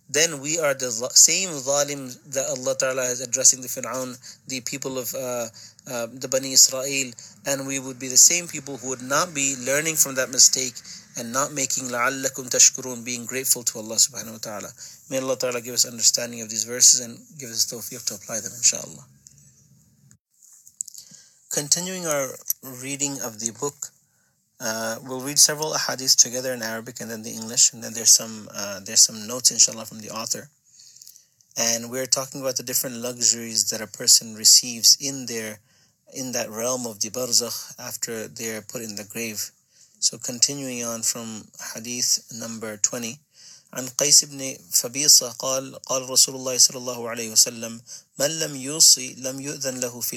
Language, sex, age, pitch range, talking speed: English, male, 30-49, 115-135 Hz, 155 wpm